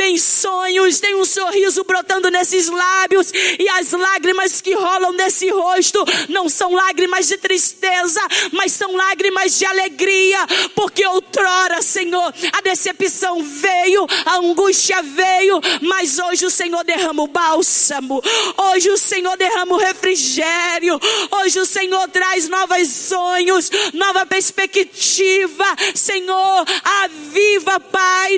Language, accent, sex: Portuguese, Brazilian, female